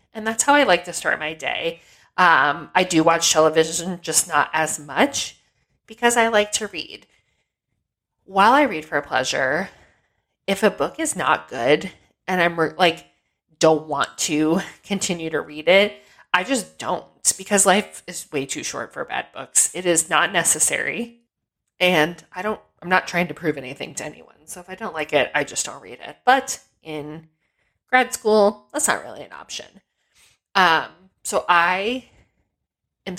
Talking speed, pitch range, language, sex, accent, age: 175 wpm, 155-200 Hz, English, female, American, 20-39